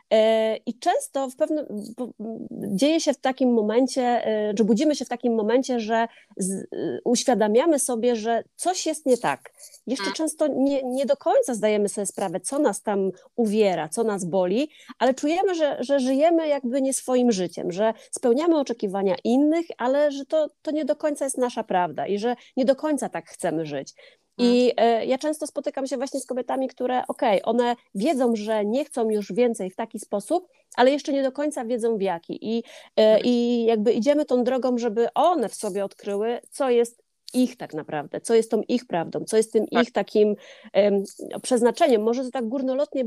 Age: 30-49